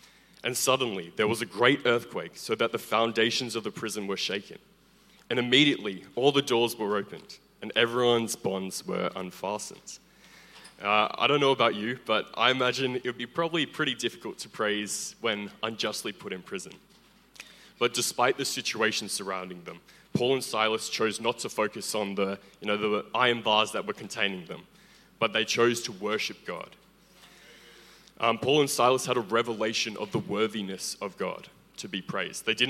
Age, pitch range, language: 20-39, 105-125 Hz, English